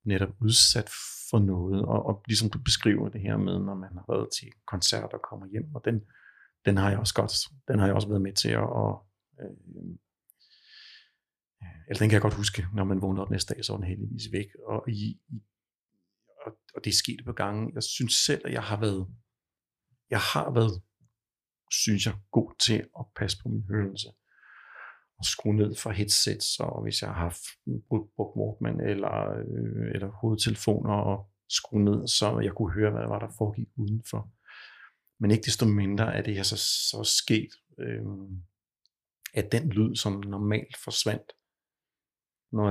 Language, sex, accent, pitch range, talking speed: Danish, male, native, 100-115 Hz, 180 wpm